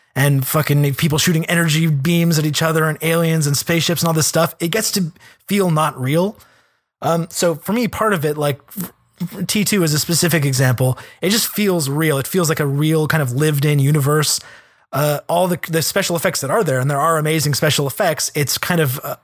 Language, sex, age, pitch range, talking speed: English, male, 20-39, 140-175 Hz, 210 wpm